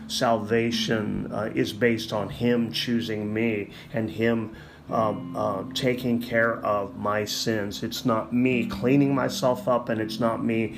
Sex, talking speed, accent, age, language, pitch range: male, 150 wpm, American, 30-49, English, 110-120 Hz